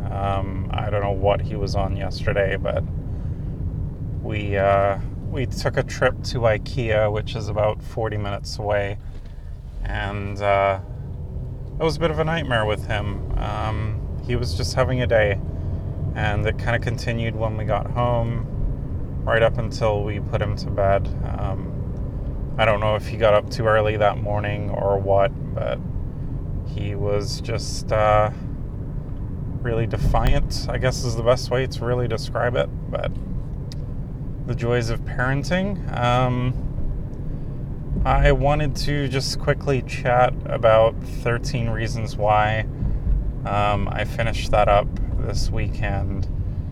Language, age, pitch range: English, 30-49, 100-125 Hz